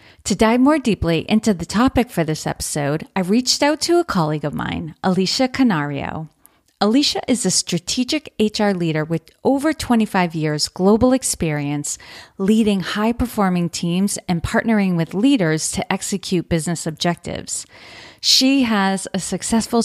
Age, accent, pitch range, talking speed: 40-59, American, 165-215 Hz, 145 wpm